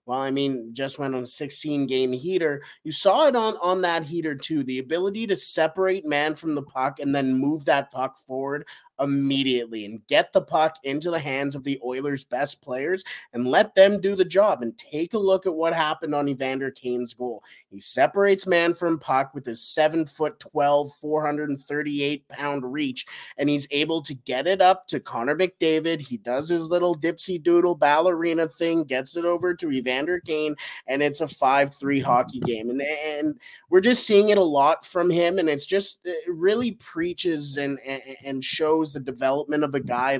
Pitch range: 135-170 Hz